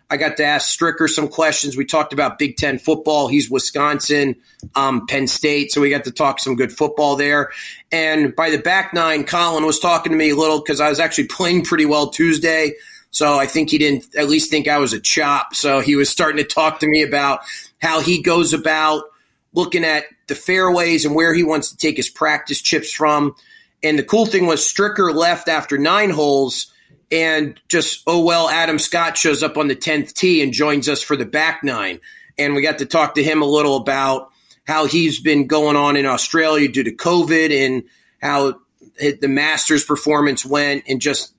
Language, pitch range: English, 145-165 Hz